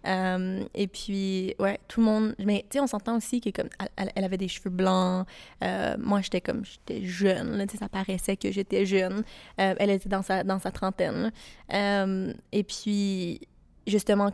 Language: French